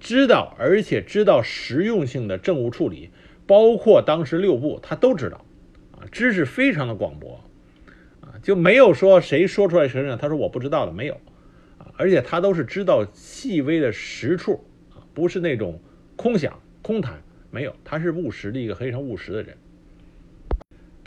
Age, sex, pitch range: 50-69, male, 120-190 Hz